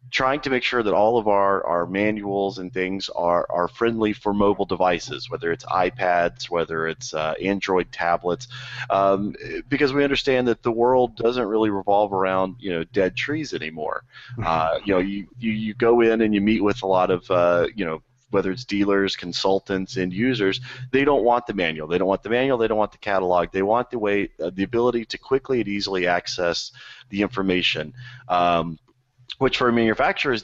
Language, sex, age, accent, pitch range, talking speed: English, male, 30-49, American, 95-125 Hz, 200 wpm